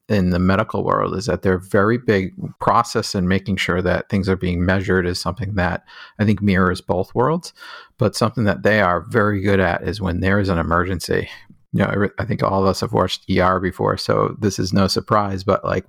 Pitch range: 90-105 Hz